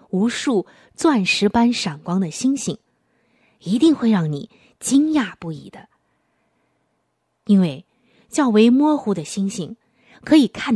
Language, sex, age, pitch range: Chinese, female, 20-39, 175-255 Hz